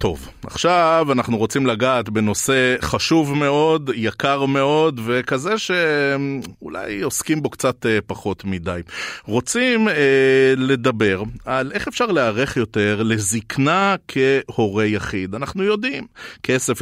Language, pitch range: Hebrew, 105-135 Hz